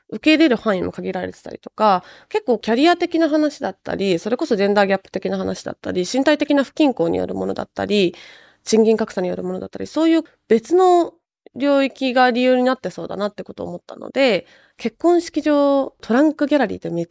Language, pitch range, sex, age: Japanese, 185-285 Hz, female, 20-39